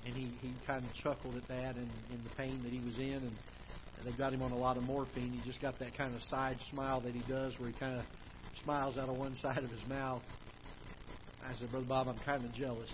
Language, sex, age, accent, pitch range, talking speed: English, male, 50-69, American, 125-145 Hz, 265 wpm